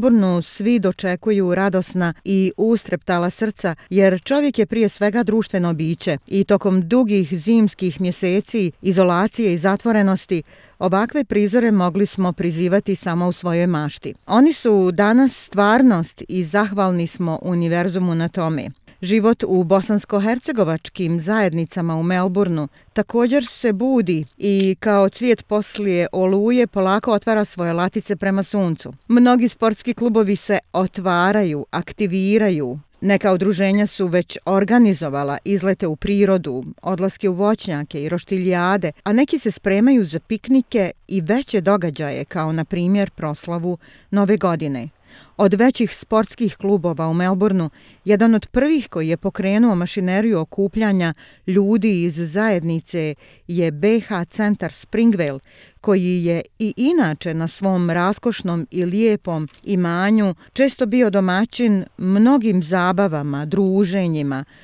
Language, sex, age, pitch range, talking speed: Croatian, female, 40-59, 175-215 Hz, 120 wpm